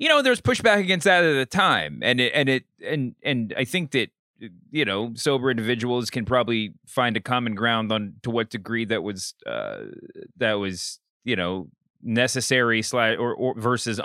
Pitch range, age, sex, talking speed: 105-140 Hz, 30-49, male, 190 wpm